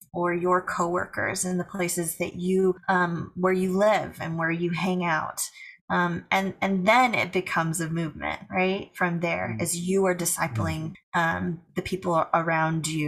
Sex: female